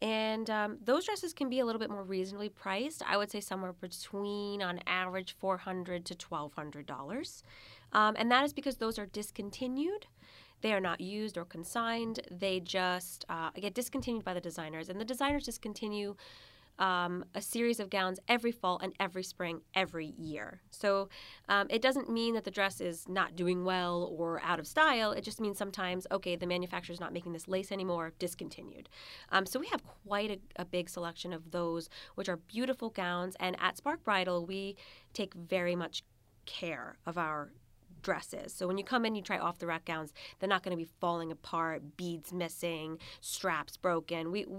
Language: English